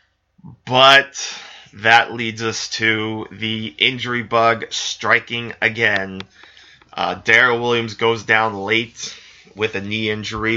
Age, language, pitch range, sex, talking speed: 20-39, English, 105-115 Hz, male, 115 wpm